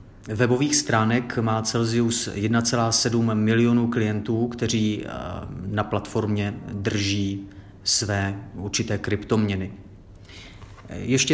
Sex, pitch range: male, 105-120 Hz